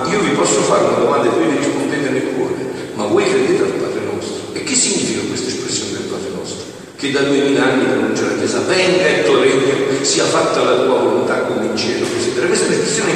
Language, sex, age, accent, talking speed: Italian, male, 50-69, native, 235 wpm